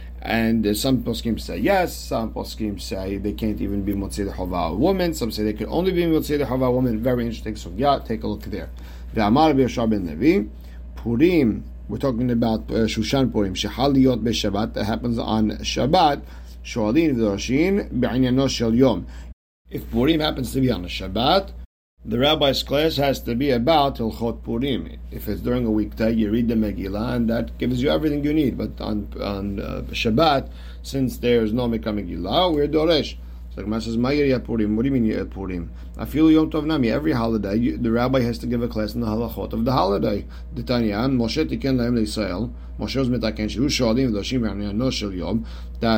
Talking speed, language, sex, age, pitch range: 165 wpm, English, male, 50-69, 100-125 Hz